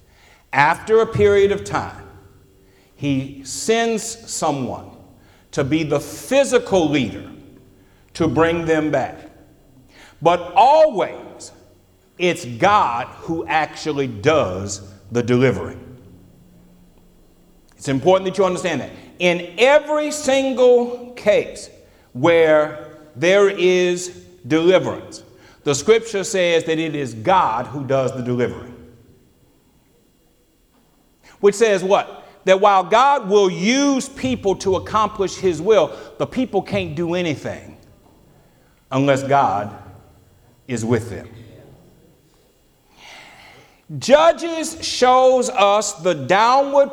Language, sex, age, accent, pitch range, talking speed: English, male, 60-79, American, 130-210 Hz, 100 wpm